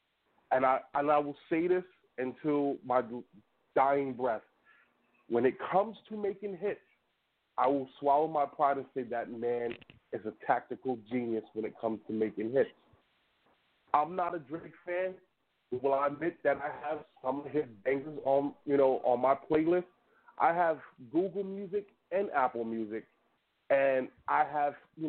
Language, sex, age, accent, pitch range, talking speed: English, male, 30-49, American, 130-180 Hz, 165 wpm